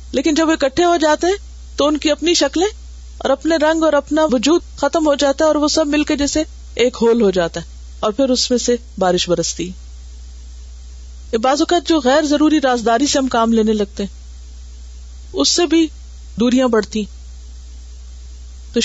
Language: Urdu